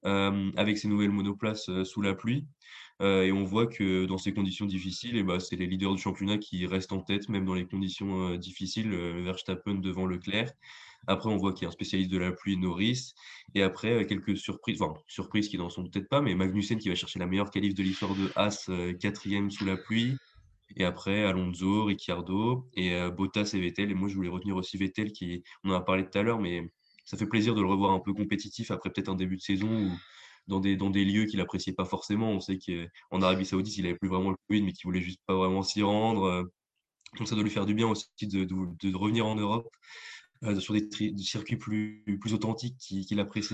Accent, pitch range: French, 95-110 Hz